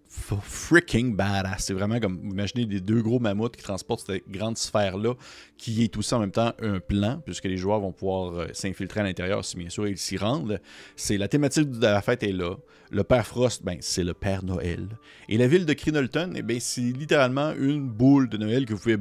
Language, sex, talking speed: French, male, 225 wpm